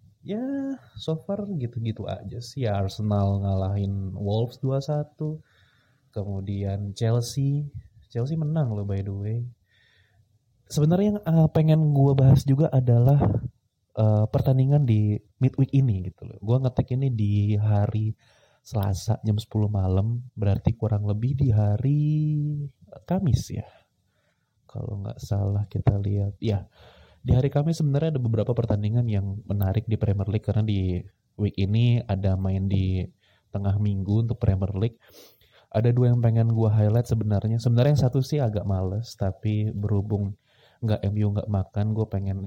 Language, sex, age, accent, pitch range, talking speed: Indonesian, male, 20-39, native, 100-125 Hz, 140 wpm